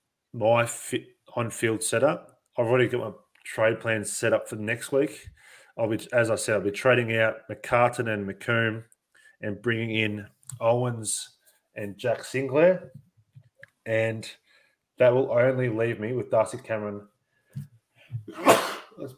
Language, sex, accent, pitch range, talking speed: English, male, Australian, 105-130 Hz, 145 wpm